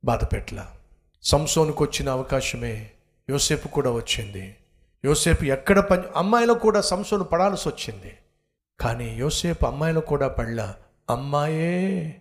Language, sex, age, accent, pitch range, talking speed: Telugu, male, 50-69, native, 120-170 Hz, 55 wpm